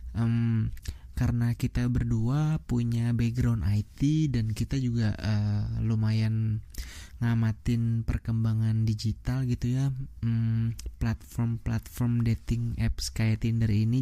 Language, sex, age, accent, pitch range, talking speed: English, male, 20-39, Indonesian, 105-120 Hz, 90 wpm